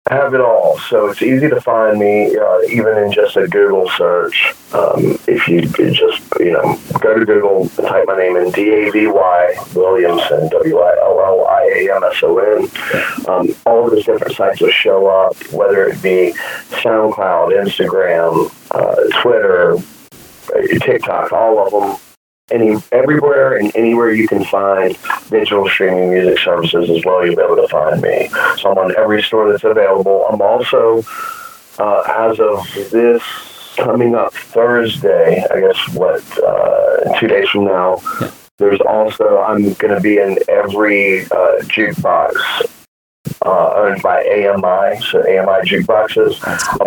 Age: 40-59